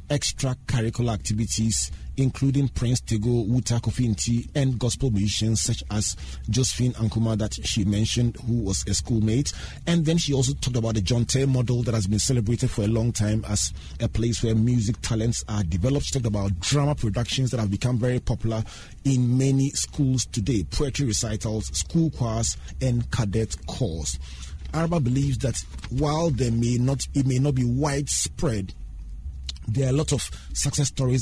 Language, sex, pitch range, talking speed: English, male, 105-130 Hz, 165 wpm